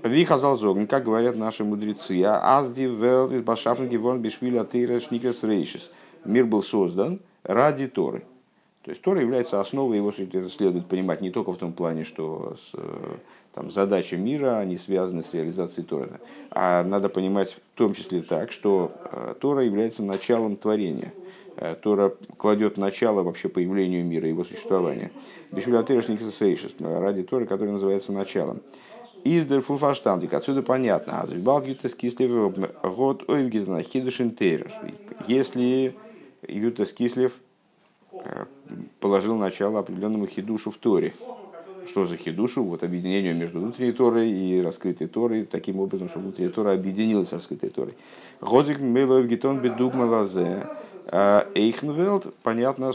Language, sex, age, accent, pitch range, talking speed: Russian, male, 50-69, native, 95-130 Hz, 125 wpm